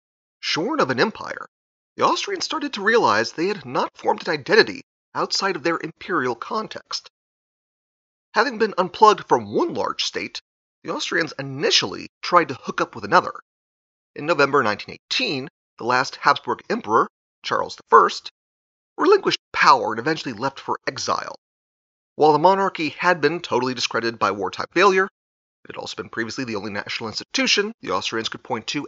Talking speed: 160 wpm